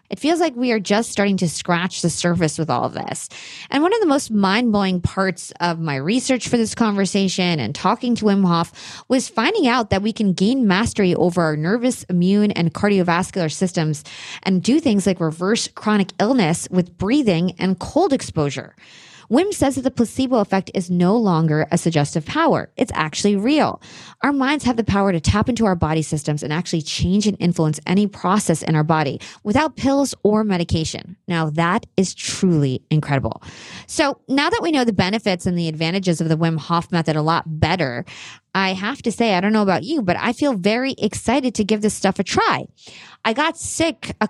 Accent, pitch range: American, 165-220 Hz